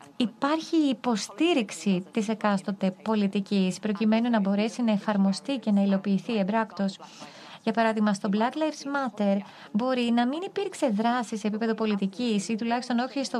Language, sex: Greek, female